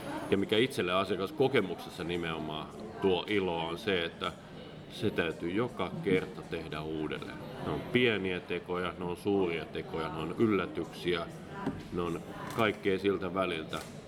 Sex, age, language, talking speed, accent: male, 30-49, Finnish, 135 wpm, native